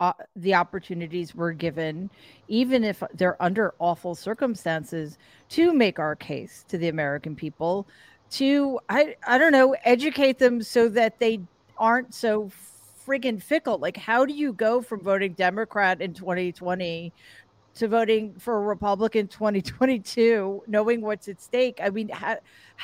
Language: English